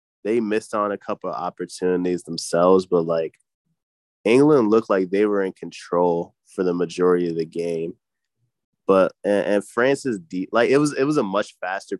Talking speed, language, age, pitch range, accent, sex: 185 wpm, English, 20-39, 85-100 Hz, American, male